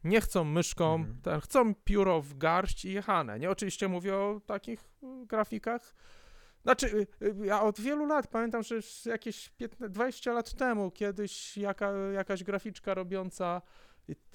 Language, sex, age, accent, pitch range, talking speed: Polish, male, 40-59, native, 180-220 Hz, 135 wpm